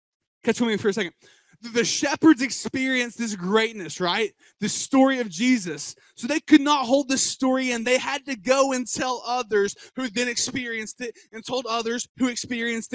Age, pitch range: 20-39, 190-245 Hz